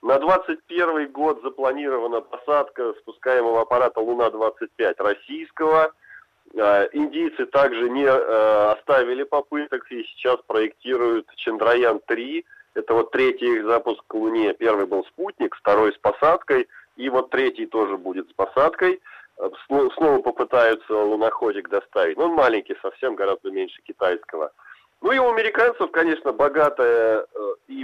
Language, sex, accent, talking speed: Russian, male, native, 120 wpm